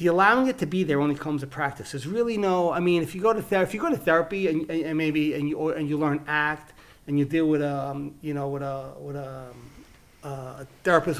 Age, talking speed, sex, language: 30-49, 275 wpm, male, English